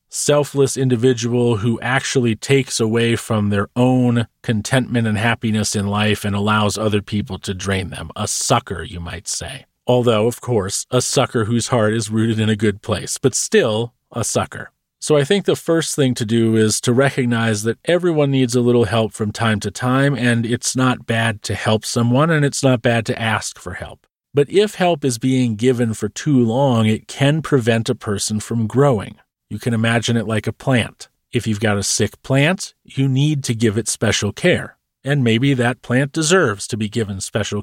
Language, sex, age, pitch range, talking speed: English, male, 40-59, 110-130 Hz, 200 wpm